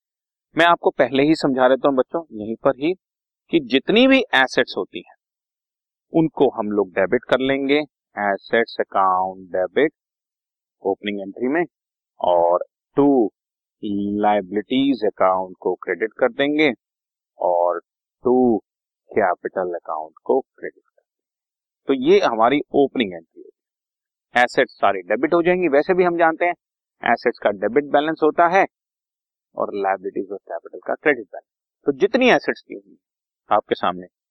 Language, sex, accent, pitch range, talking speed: Hindi, male, native, 100-165 Hz, 140 wpm